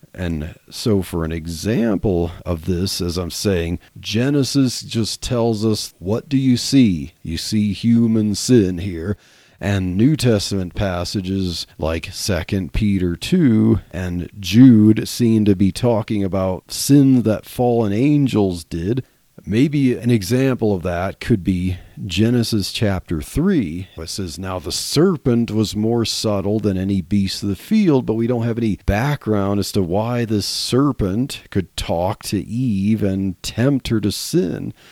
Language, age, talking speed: English, 40-59, 150 wpm